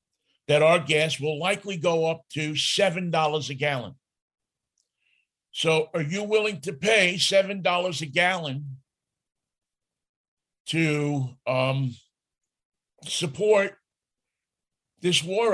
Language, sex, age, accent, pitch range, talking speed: English, male, 60-79, American, 150-210 Hz, 95 wpm